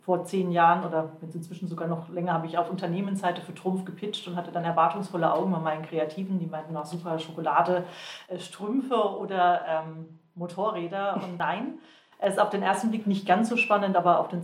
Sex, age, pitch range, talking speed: female, 40-59, 165-185 Hz, 195 wpm